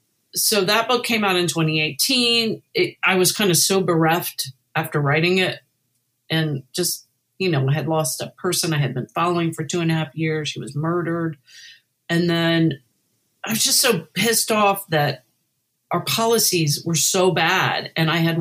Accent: American